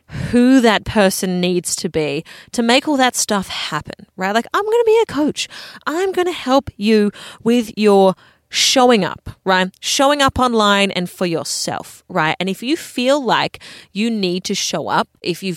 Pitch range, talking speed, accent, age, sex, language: 180-250 Hz, 190 wpm, Australian, 30-49, female, English